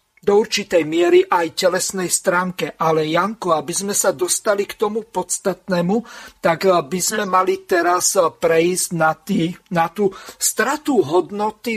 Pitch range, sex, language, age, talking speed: 170-205 Hz, male, Slovak, 50-69, 140 wpm